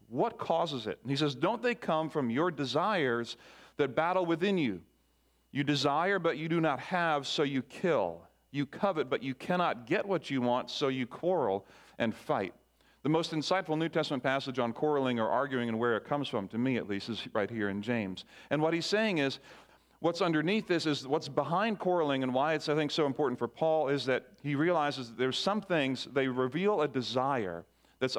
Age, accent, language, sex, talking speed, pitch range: 40-59, American, English, male, 210 wpm, 125-160 Hz